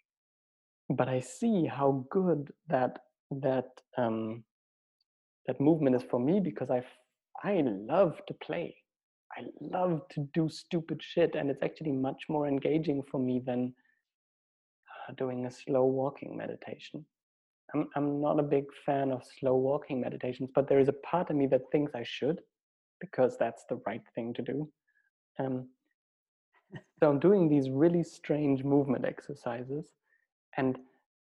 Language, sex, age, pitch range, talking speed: English, male, 30-49, 130-160 Hz, 150 wpm